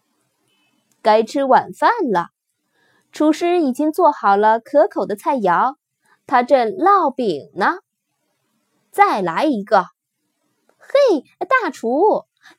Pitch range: 215-320 Hz